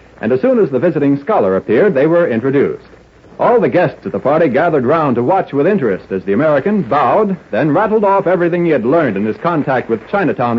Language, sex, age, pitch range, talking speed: English, male, 60-79, 125-190 Hz, 220 wpm